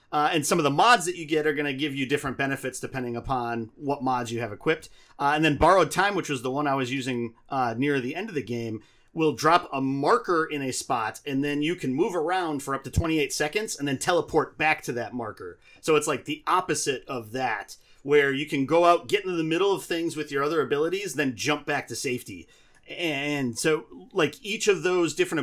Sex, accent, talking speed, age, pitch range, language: male, American, 240 wpm, 30-49, 130-165 Hz, English